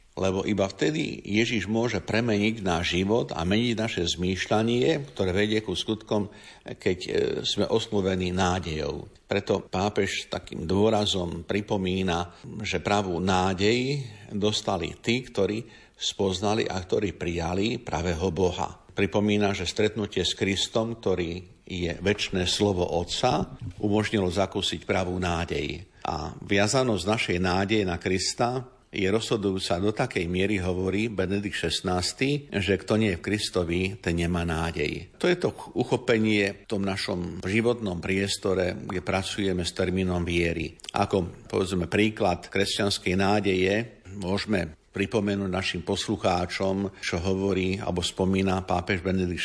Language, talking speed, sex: Slovak, 125 wpm, male